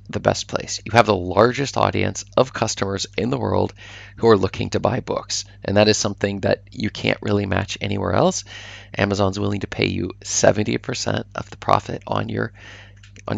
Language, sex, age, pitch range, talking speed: English, male, 30-49, 100-110 Hz, 190 wpm